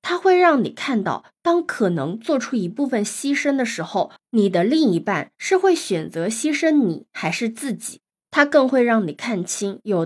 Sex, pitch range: female, 195-255 Hz